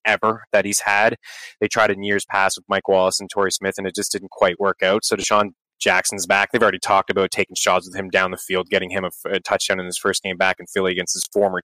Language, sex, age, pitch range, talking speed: English, male, 20-39, 105-125 Hz, 265 wpm